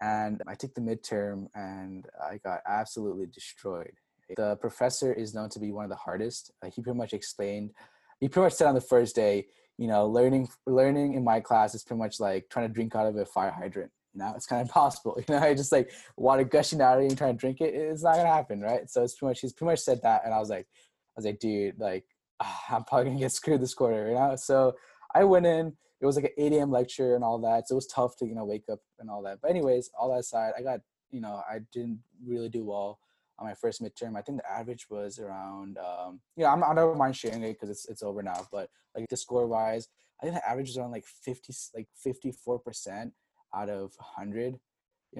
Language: Telugu